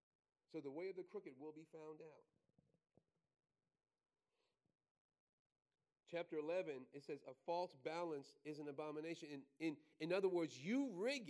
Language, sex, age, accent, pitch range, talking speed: English, male, 40-59, American, 165-240 Hz, 140 wpm